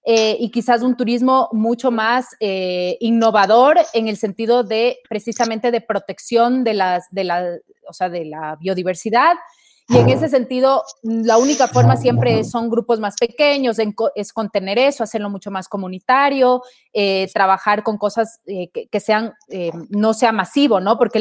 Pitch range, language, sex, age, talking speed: 205-255 Hz, English, female, 30-49, 165 wpm